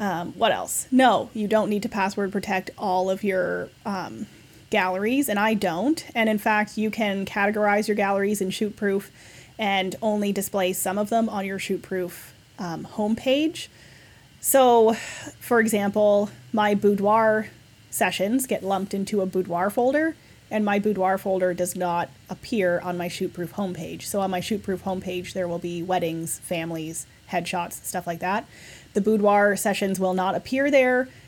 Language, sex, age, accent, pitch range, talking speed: English, female, 30-49, American, 180-215 Hz, 155 wpm